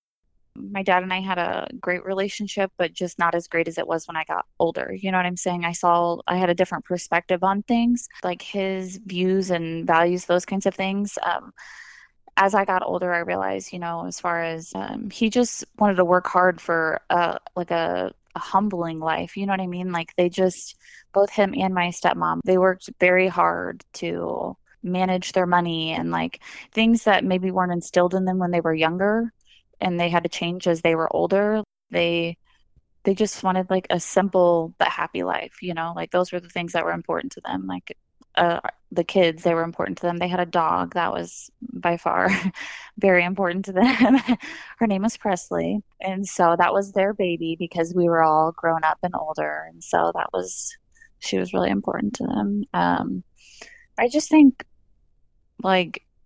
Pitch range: 170-195 Hz